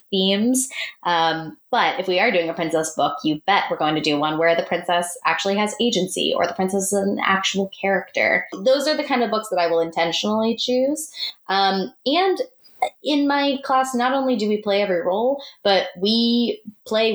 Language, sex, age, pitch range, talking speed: English, female, 20-39, 175-245 Hz, 195 wpm